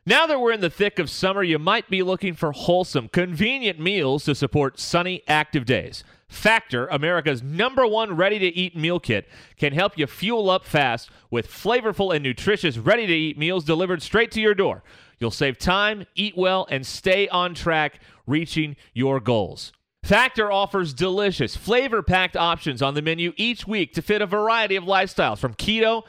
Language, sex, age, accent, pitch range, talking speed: English, male, 30-49, American, 150-200 Hz, 170 wpm